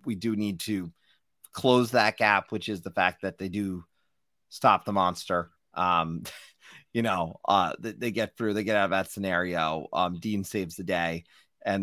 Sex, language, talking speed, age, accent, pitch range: male, English, 190 wpm, 30-49, American, 95-130 Hz